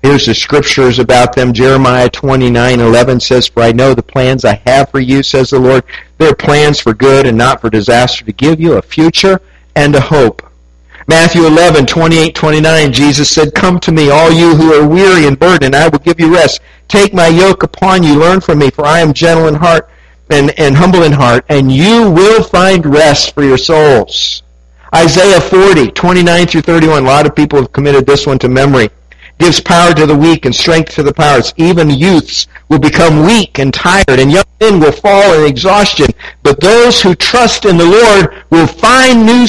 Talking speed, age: 205 wpm, 50-69